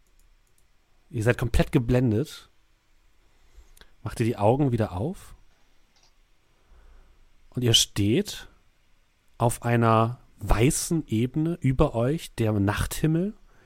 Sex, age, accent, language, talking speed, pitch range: male, 40-59, German, German, 90 wpm, 110-155 Hz